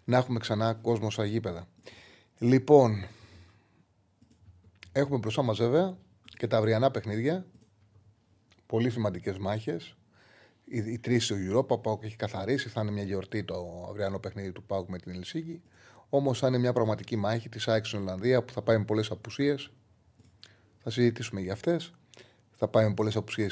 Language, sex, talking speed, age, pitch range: Greek, male, 155 wpm, 30-49, 105-125 Hz